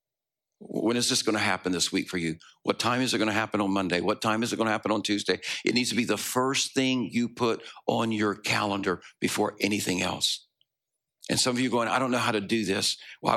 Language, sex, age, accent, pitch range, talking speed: English, male, 60-79, American, 105-125 Hz, 255 wpm